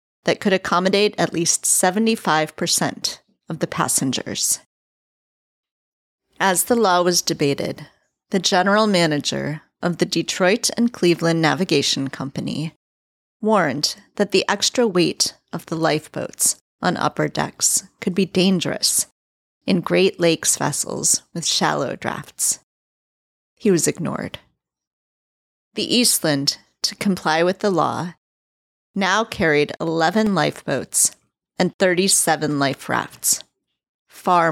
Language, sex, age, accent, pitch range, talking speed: English, female, 40-59, American, 150-195 Hz, 110 wpm